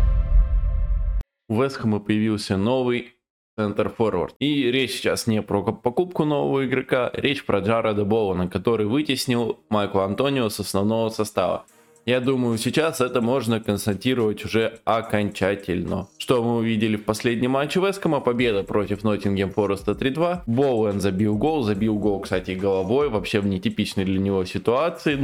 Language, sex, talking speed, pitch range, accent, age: Russian, male, 140 wpm, 105-130 Hz, native, 20-39